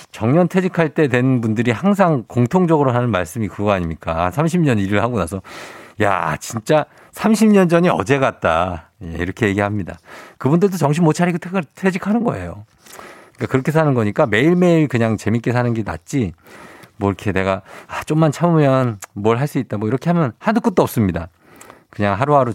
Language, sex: Korean, male